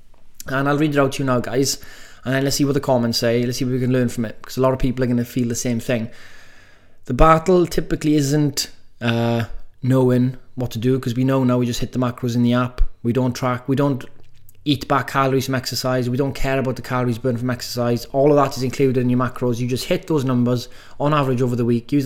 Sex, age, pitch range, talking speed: male, 20-39, 120-140 Hz, 260 wpm